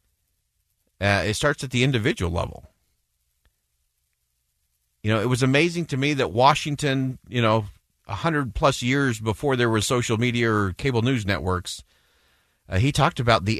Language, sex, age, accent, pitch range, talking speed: English, male, 40-59, American, 85-125 Hz, 155 wpm